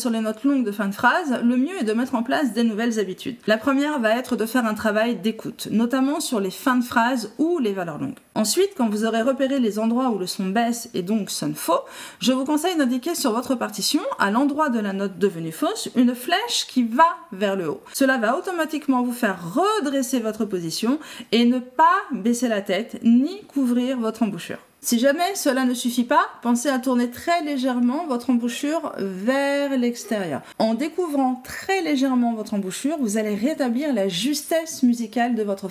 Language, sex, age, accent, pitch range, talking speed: French, female, 40-59, French, 230-320 Hz, 200 wpm